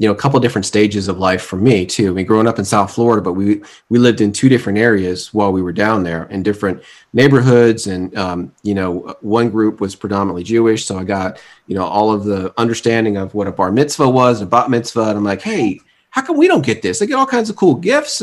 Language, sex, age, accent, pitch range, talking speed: English, male, 30-49, American, 95-120 Hz, 255 wpm